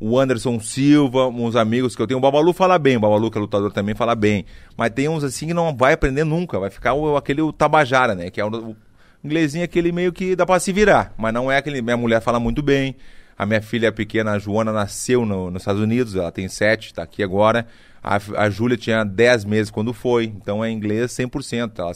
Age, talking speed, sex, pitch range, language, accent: 30-49, 240 wpm, male, 110-150 Hz, Portuguese, Brazilian